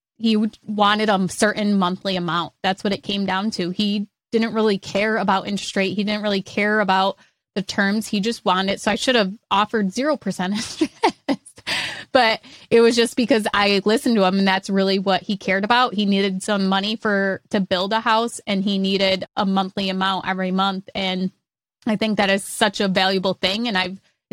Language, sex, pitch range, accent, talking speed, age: English, female, 190-220 Hz, American, 200 wpm, 20-39